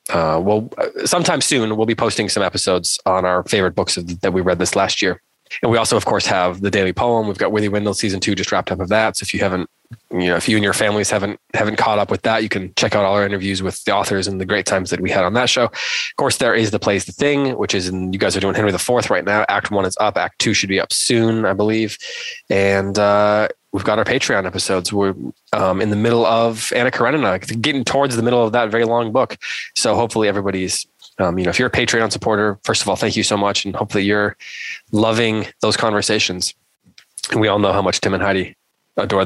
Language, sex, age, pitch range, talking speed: English, male, 20-39, 100-115 Hz, 255 wpm